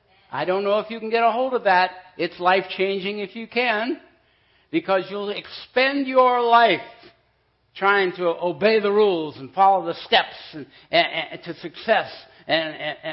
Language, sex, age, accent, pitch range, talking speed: English, male, 60-79, American, 155-230 Hz, 165 wpm